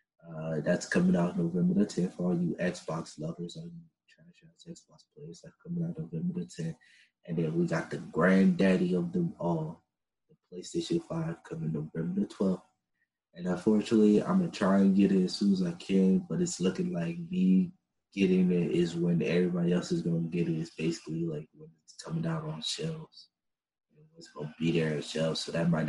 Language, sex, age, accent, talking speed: English, male, 20-39, American, 205 wpm